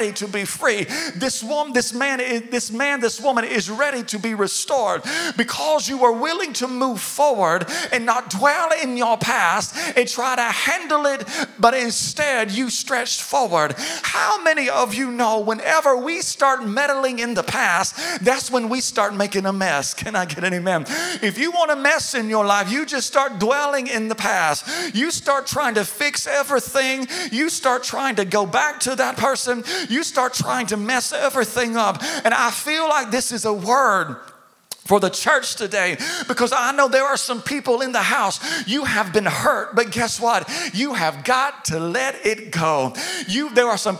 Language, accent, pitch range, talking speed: English, American, 220-280 Hz, 190 wpm